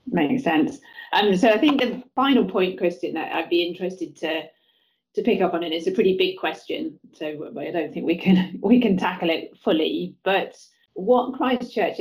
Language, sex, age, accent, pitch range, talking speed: English, female, 30-49, British, 155-205 Hz, 200 wpm